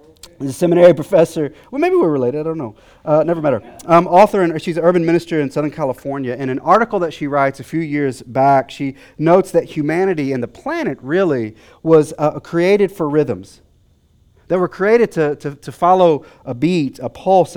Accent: American